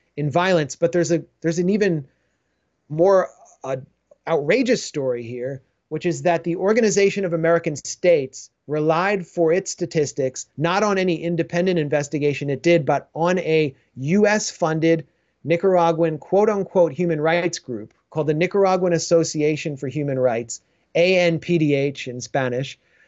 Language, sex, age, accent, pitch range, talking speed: English, male, 30-49, American, 140-175 Hz, 140 wpm